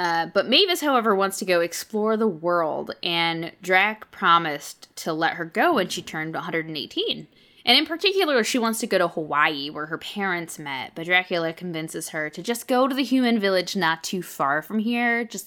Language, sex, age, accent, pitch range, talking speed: English, female, 10-29, American, 160-220 Hz, 200 wpm